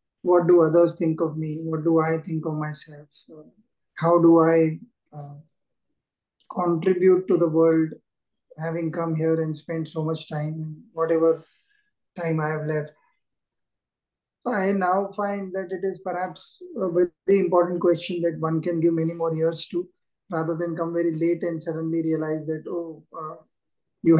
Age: 20-39